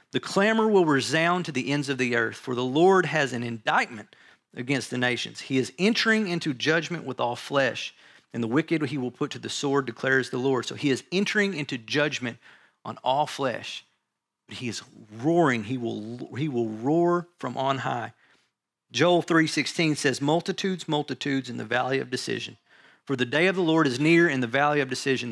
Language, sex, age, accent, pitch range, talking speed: English, male, 40-59, American, 125-160 Hz, 195 wpm